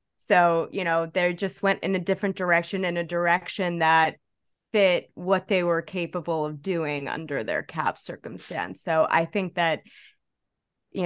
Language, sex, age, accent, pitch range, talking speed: English, female, 20-39, American, 160-185 Hz, 165 wpm